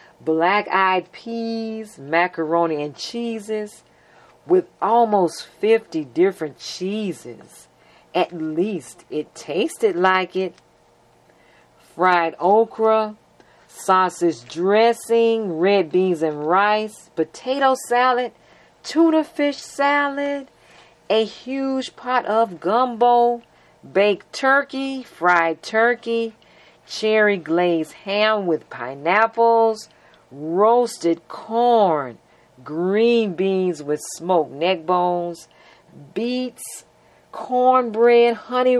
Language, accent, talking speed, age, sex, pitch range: English, American, 85 wpm, 40-59, female, 170-235 Hz